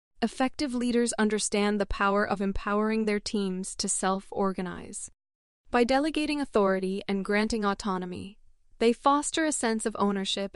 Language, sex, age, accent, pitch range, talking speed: English, female, 20-39, American, 195-230 Hz, 130 wpm